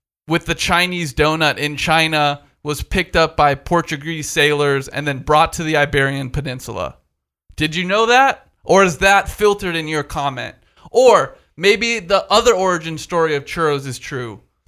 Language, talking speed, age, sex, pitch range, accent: English, 165 wpm, 20-39, male, 150-205 Hz, American